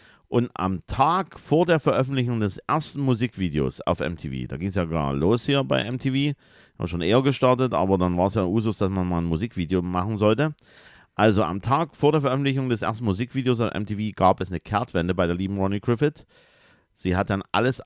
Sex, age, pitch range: male, 50-69, 80-115 Hz